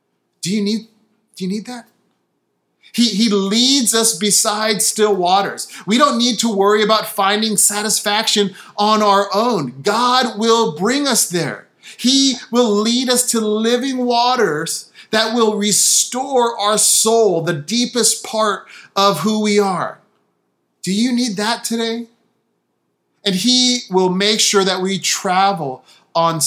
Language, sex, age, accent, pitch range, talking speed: English, male, 30-49, American, 190-225 Hz, 140 wpm